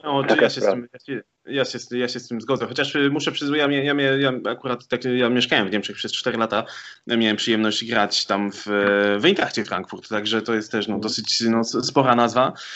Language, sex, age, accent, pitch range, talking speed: Polish, male, 20-39, native, 110-130 Hz, 205 wpm